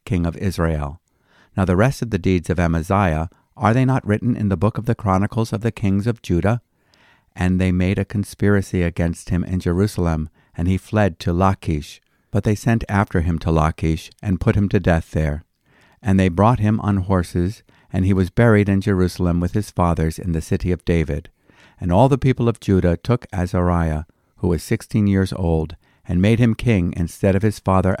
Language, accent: English, American